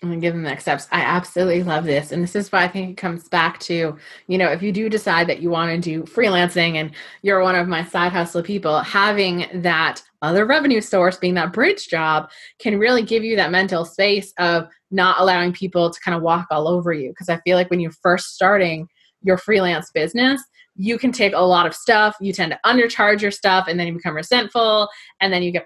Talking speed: 230 wpm